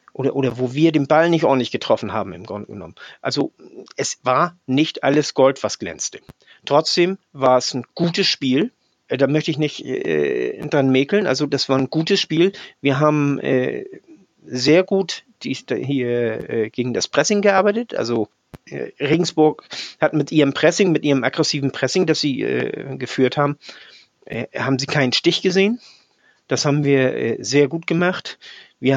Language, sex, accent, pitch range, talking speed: German, male, German, 140-175 Hz, 170 wpm